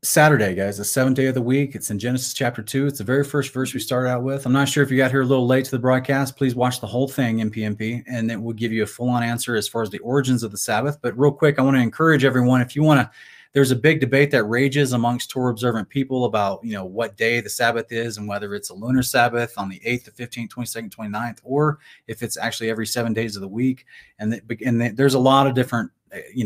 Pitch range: 115-135 Hz